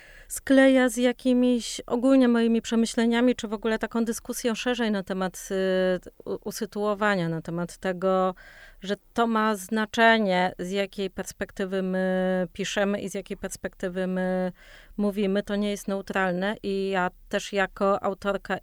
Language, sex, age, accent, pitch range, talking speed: Polish, female, 30-49, native, 185-225 Hz, 135 wpm